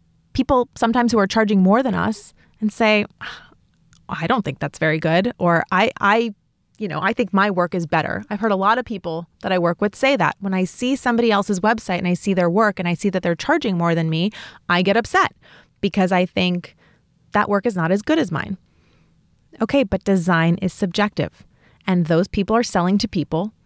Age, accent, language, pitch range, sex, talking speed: 30-49, American, English, 175-230 Hz, female, 215 wpm